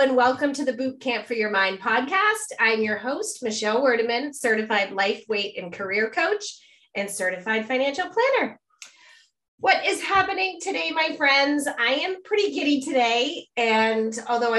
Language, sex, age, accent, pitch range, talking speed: English, female, 30-49, American, 200-275 Hz, 150 wpm